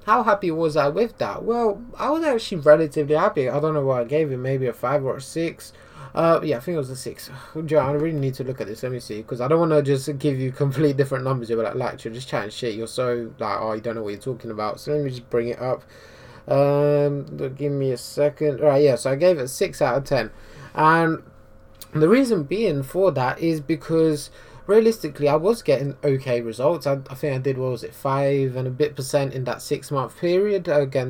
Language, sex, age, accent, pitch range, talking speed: English, male, 20-39, British, 130-160 Hz, 245 wpm